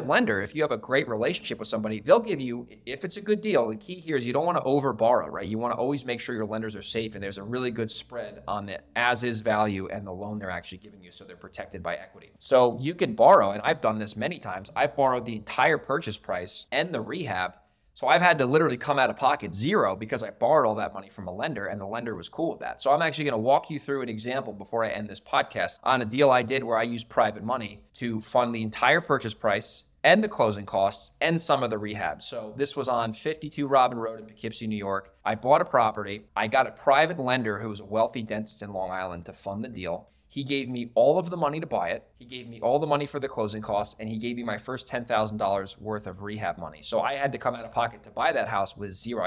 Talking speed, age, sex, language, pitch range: 270 wpm, 20-39, male, English, 105-135 Hz